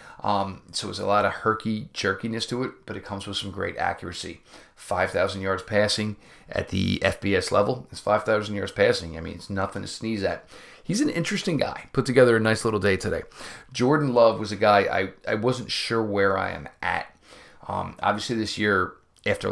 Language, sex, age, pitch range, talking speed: English, male, 40-59, 100-115 Hz, 195 wpm